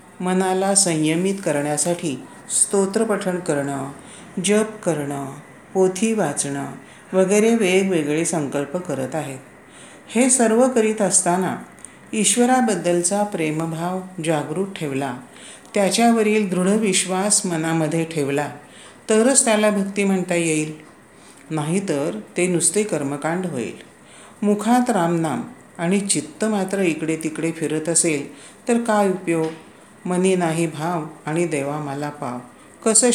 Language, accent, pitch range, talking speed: Marathi, native, 155-205 Hz, 105 wpm